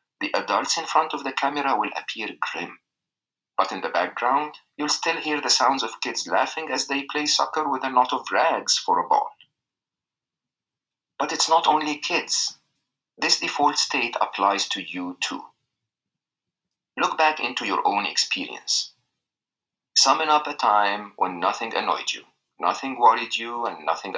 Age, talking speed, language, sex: 50-69, 160 wpm, English, male